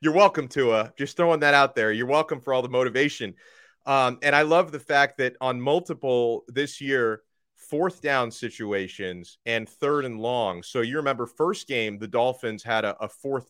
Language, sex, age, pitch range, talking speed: English, male, 30-49, 115-145 Hz, 190 wpm